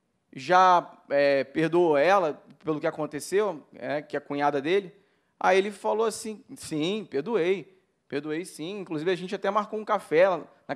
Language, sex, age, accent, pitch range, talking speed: Portuguese, male, 20-39, Brazilian, 160-210 Hz, 160 wpm